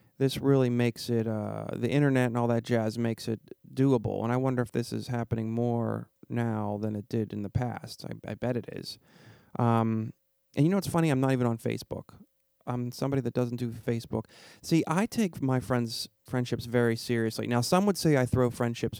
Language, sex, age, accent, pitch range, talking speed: English, male, 30-49, American, 110-130 Hz, 210 wpm